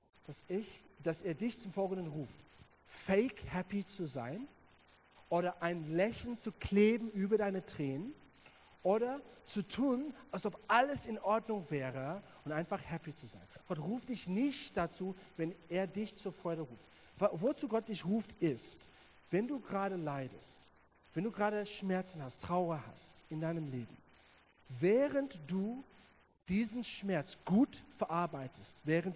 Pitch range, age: 140-205 Hz, 40-59